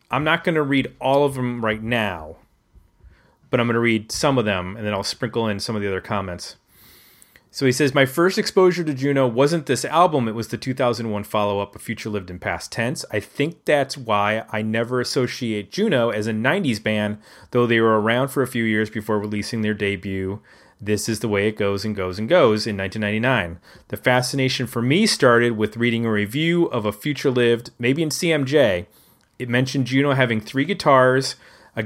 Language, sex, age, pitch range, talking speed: English, male, 30-49, 105-135 Hz, 205 wpm